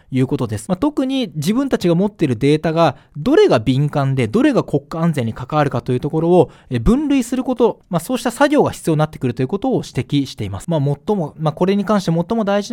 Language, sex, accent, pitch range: Japanese, male, native, 140-225 Hz